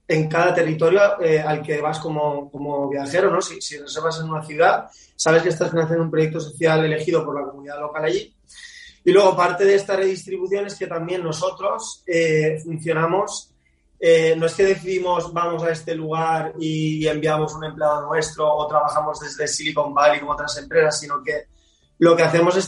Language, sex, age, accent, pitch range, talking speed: Spanish, male, 20-39, Spanish, 155-180 Hz, 185 wpm